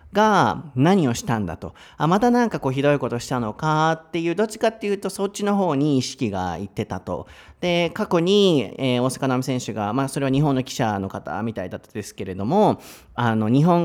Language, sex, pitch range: Japanese, male, 115-175 Hz